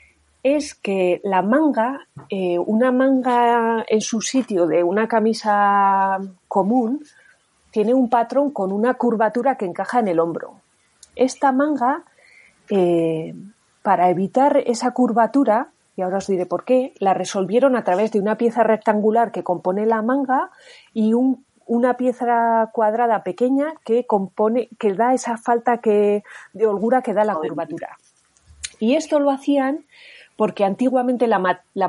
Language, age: Spanish, 30-49